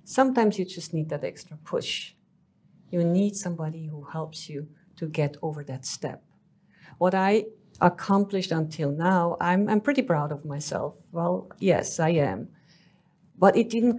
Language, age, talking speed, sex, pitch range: English, 50-69, 155 wpm, female, 160-195 Hz